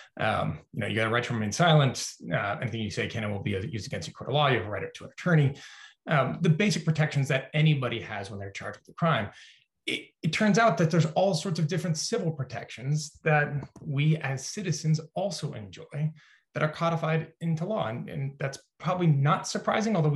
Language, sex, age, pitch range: English, male, 20-39, 120-160 Hz